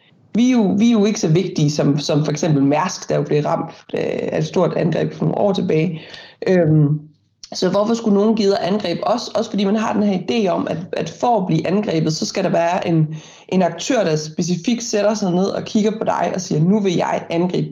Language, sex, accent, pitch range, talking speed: Danish, female, native, 165-220 Hz, 240 wpm